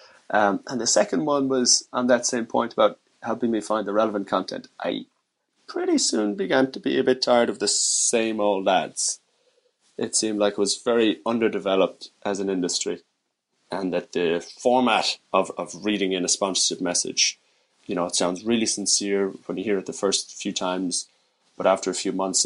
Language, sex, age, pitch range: English, male, 30-49, 90-110 Hz